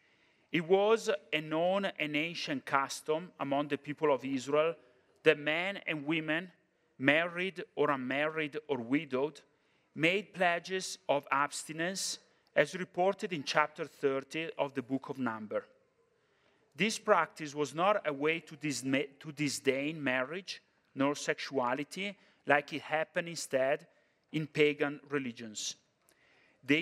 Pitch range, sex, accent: 145-190 Hz, male, Italian